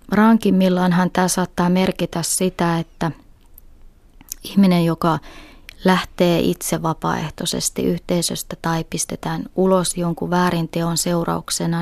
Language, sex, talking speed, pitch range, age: Finnish, female, 95 wpm, 165-180 Hz, 20-39